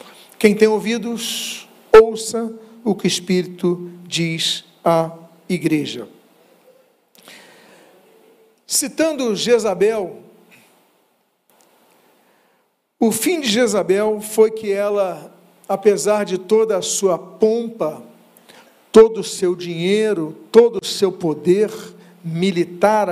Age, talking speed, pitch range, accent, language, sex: 50-69, 90 wpm, 185-235 Hz, Brazilian, Portuguese, male